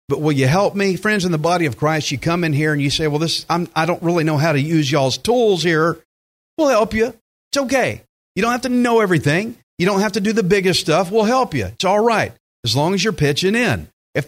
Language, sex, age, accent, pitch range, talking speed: English, male, 50-69, American, 135-195 Hz, 265 wpm